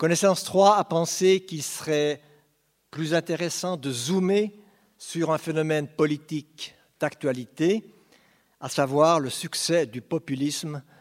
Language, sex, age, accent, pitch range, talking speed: French, male, 60-79, French, 130-165 Hz, 115 wpm